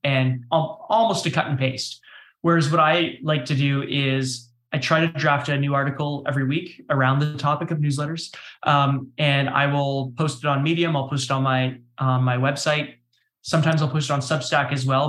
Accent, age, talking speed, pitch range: American, 20-39, 205 wpm, 130-155 Hz